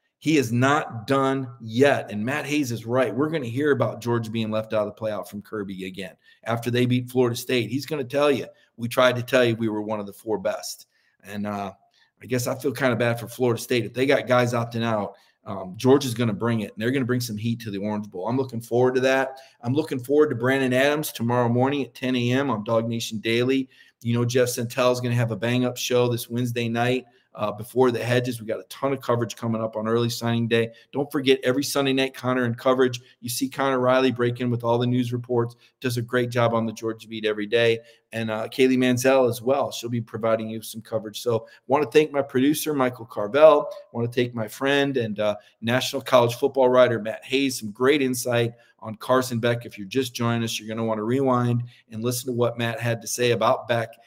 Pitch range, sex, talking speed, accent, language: 115-130 Hz, male, 250 wpm, American, English